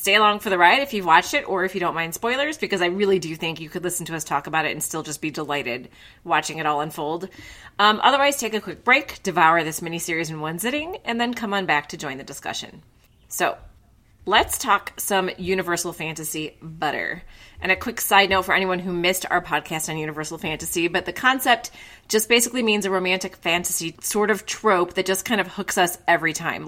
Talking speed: 225 wpm